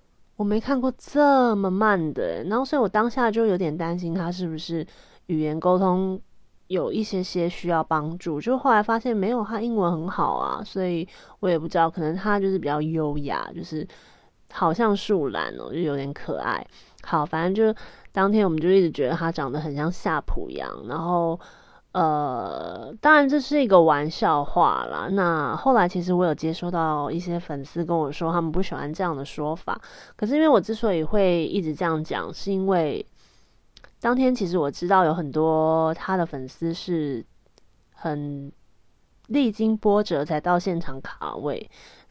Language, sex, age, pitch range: Chinese, female, 30-49, 160-215 Hz